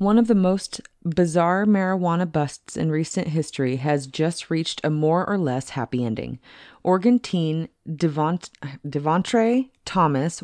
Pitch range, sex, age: 145-185 Hz, female, 30-49